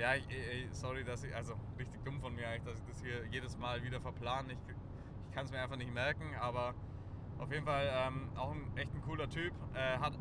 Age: 20-39